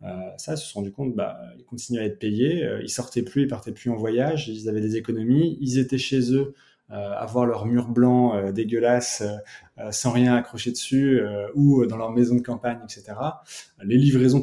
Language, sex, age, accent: French, male, 20-39, French